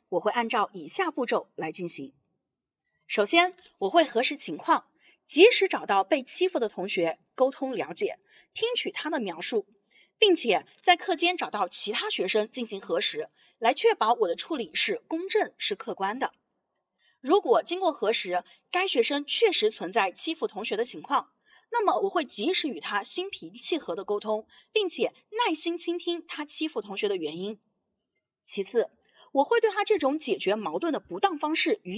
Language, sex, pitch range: Chinese, female, 245-390 Hz